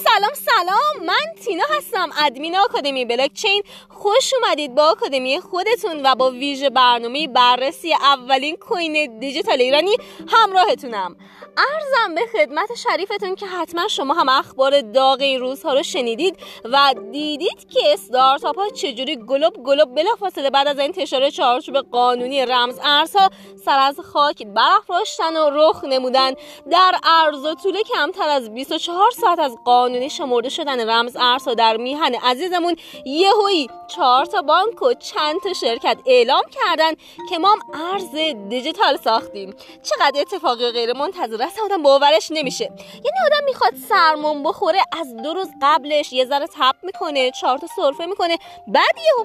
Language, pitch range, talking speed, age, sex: English, 265-370 Hz, 145 wpm, 20-39, female